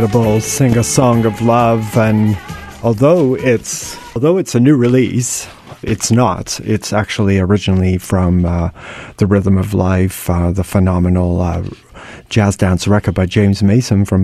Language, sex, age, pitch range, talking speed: English, male, 30-49, 95-120 Hz, 150 wpm